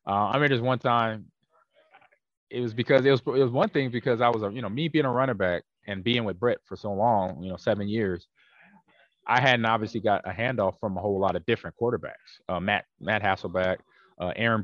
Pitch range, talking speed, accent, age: 100-135 Hz, 230 wpm, American, 20-39